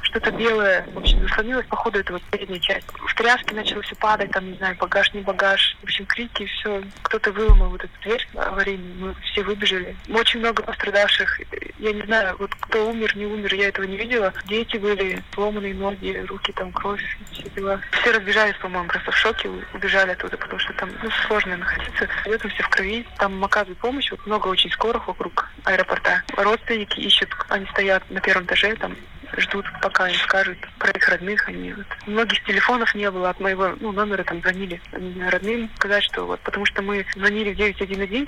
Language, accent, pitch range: Russian, native, 190-215 Hz